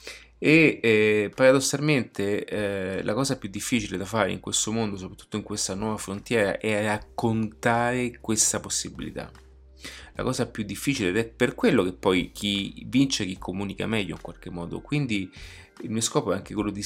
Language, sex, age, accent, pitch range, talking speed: Italian, male, 30-49, native, 95-115 Hz, 170 wpm